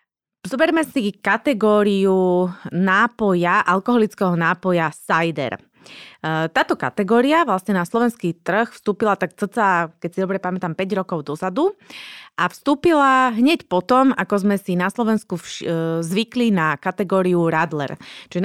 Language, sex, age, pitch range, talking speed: Slovak, female, 20-39, 170-215 Hz, 120 wpm